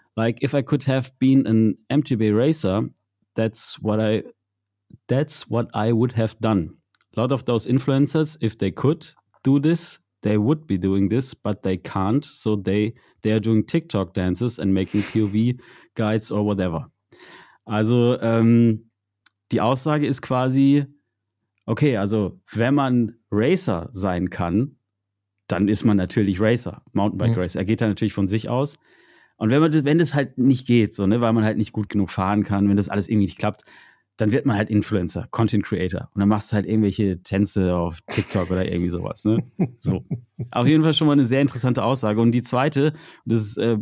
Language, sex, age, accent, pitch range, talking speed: German, male, 30-49, German, 105-135 Hz, 185 wpm